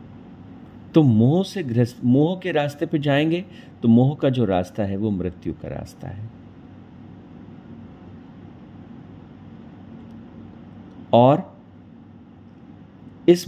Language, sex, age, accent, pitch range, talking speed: Hindi, male, 50-69, native, 100-140 Hz, 100 wpm